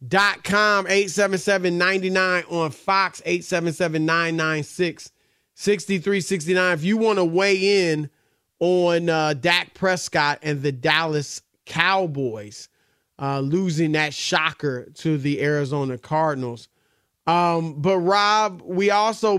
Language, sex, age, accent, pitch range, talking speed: English, male, 30-49, American, 145-180 Hz, 115 wpm